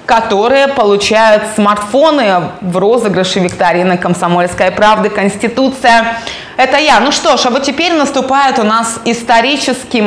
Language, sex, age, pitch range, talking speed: Russian, female, 20-39, 195-250 Hz, 125 wpm